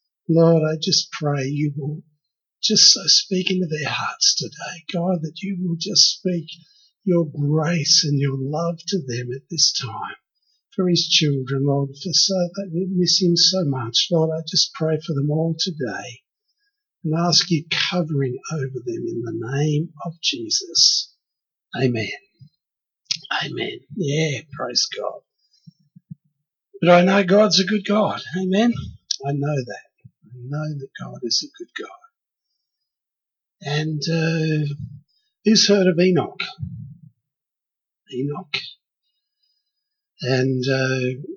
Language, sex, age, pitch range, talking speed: English, male, 50-69, 140-185 Hz, 130 wpm